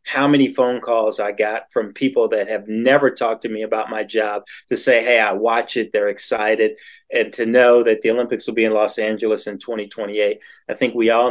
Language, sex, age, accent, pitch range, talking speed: English, male, 40-59, American, 110-135 Hz, 225 wpm